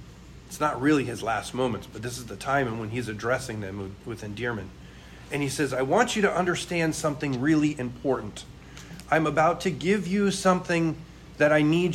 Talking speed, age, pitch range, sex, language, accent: 185 wpm, 40-59, 100-150 Hz, male, English, American